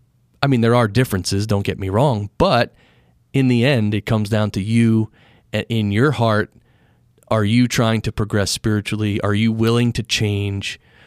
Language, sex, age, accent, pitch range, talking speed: English, male, 30-49, American, 105-125 Hz, 175 wpm